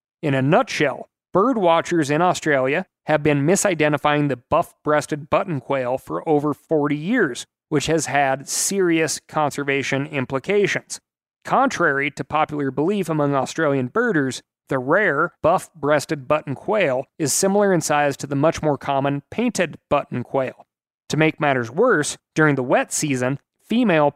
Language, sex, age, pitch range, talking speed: English, male, 30-49, 135-170 Hz, 140 wpm